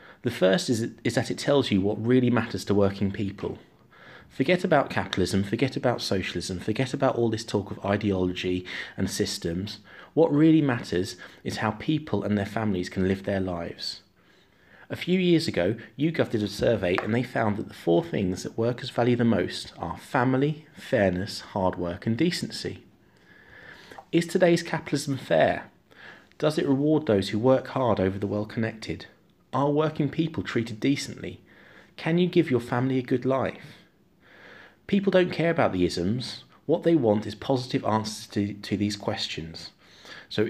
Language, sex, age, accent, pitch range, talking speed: English, male, 30-49, British, 95-135 Hz, 165 wpm